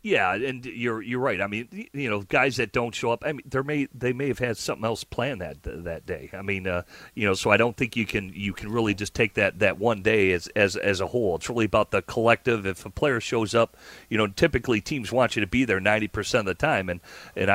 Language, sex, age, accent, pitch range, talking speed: English, male, 40-59, American, 100-125 Hz, 265 wpm